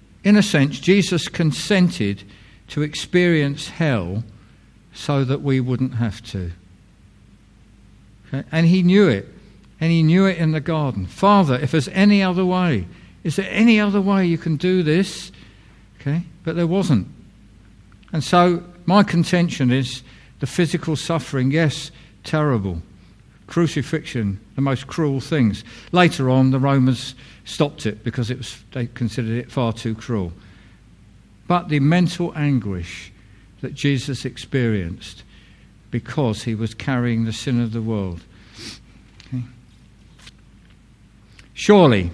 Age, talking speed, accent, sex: 50-69, 130 wpm, British, male